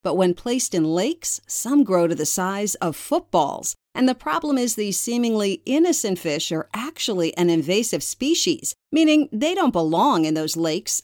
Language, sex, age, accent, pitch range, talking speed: English, female, 50-69, American, 175-250 Hz, 175 wpm